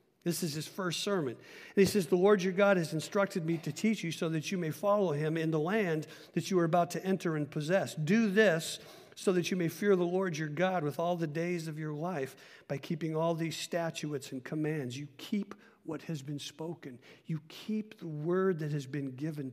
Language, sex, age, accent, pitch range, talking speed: English, male, 50-69, American, 145-175 Hz, 225 wpm